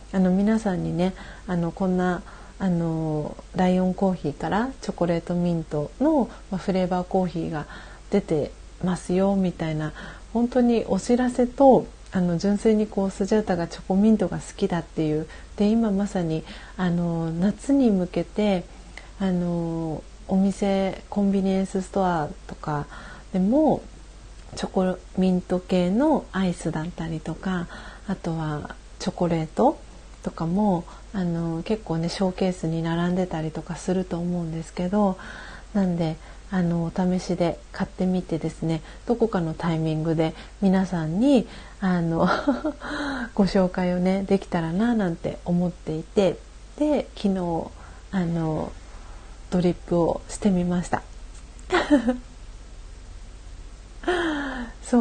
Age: 40-59